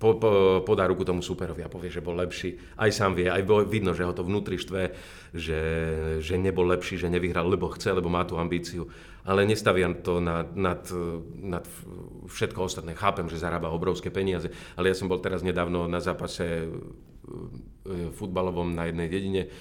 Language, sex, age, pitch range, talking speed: Slovak, male, 40-59, 90-105 Hz, 175 wpm